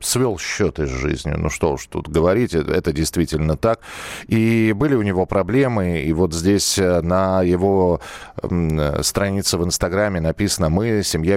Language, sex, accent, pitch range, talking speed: Russian, male, native, 85-110 Hz, 155 wpm